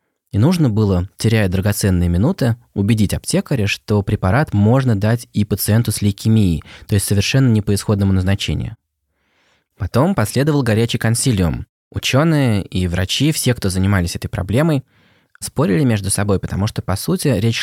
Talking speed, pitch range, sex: 145 wpm, 95-120 Hz, male